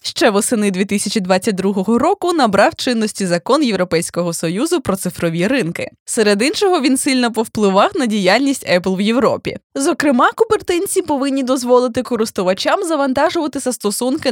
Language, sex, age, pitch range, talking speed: Ukrainian, female, 20-39, 200-295 Hz, 120 wpm